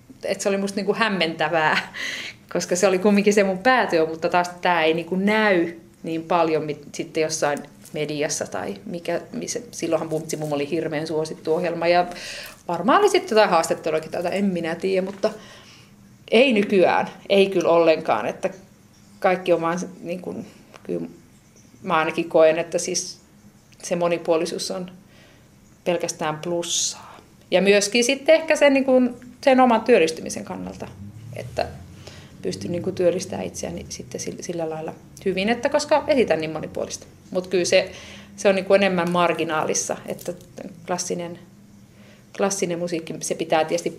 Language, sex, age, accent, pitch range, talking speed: Finnish, female, 30-49, native, 165-200 Hz, 150 wpm